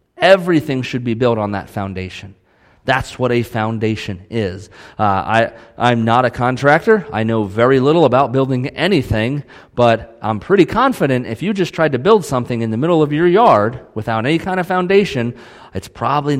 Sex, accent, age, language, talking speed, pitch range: male, American, 30-49, English, 175 wpm, 105-140 Hz